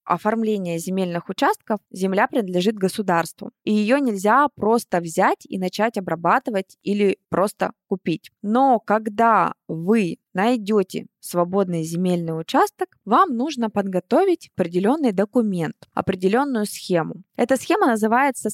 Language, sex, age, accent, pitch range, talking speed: Russian, female, 20-39, native, 175-235 Hz, 110 wpm